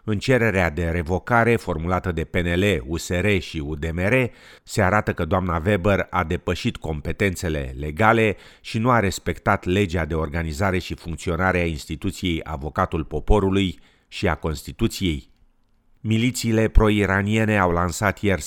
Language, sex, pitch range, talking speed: Romanian, male, 85-100 Hz, 130 wpm